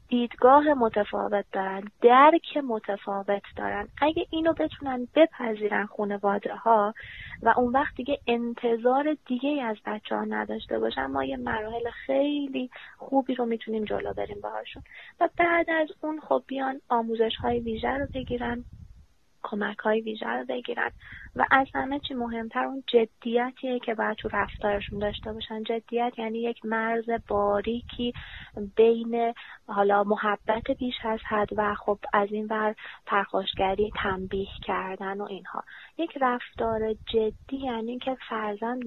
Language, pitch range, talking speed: Persian, 205-255 Hz, 135 wpm